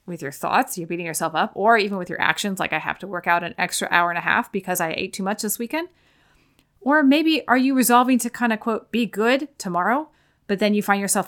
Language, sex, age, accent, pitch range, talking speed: English, female, 30-49, American, 180-225 Hz, 255 wpm